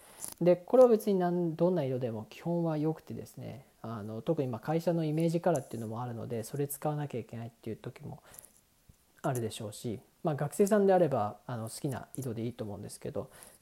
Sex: male